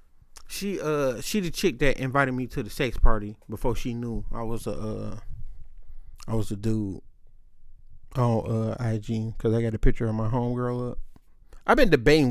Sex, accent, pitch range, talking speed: male, American, 110-140 Hz, 195 wpm